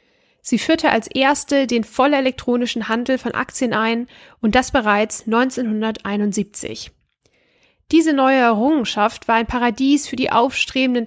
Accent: German